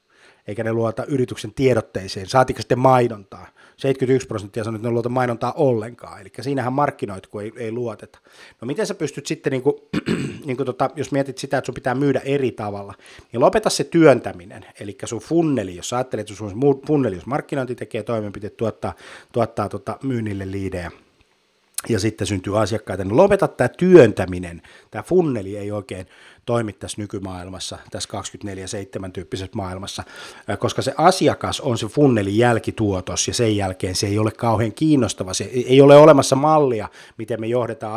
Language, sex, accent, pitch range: Finnish, male, native, 100-130 Hz